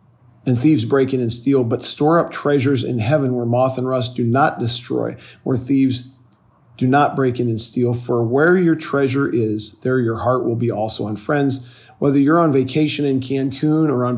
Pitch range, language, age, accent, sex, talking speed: 120-145 Hz, English, 40-59, American, male, 205 wpm